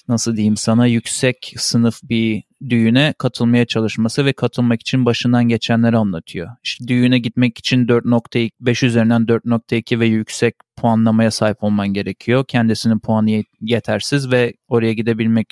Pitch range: 115-150 Hz